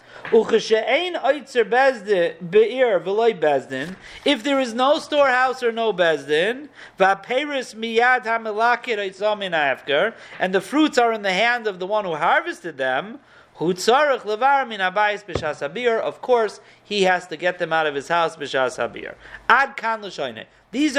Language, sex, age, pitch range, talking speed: English, male, 50-69, 180-250 Hz, 95 wpm